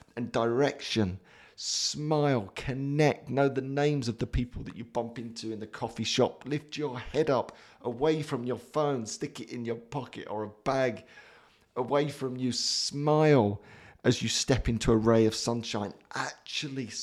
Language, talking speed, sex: English, 165 wpm, male